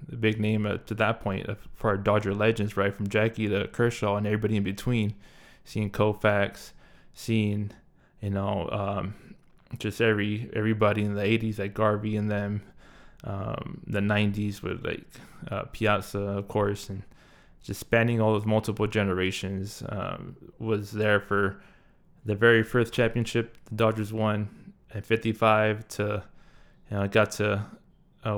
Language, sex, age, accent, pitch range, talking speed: English, male, 20-39, American, 100-115 Hz, 150 wpm